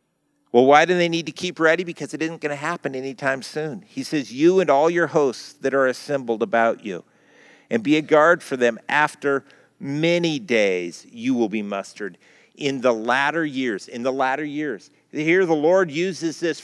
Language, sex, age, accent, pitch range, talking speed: English, male, 50-69, American, 140-170 Hz, 190 wpm